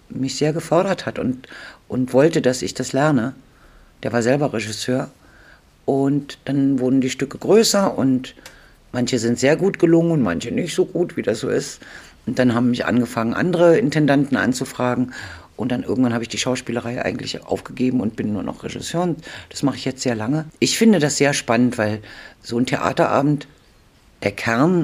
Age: 50-69